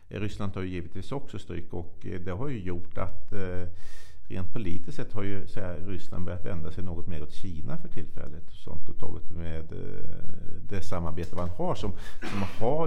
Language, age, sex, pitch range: Swedish, 50-69, male, 85-110 Hz